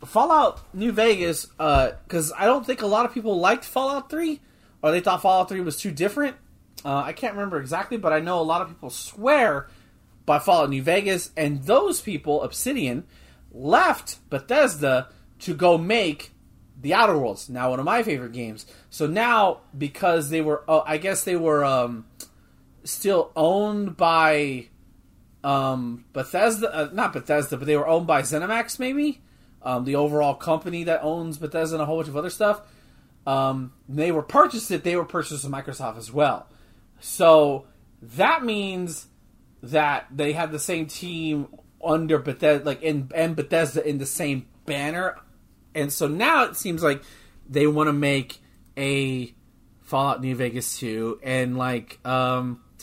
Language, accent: English, American